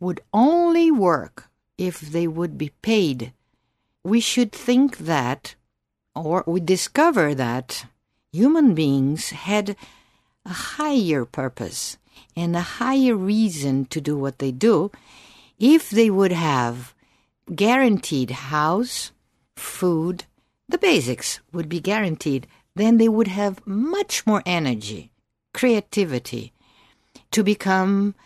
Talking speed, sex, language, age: 115 wpm, female, English, 60-79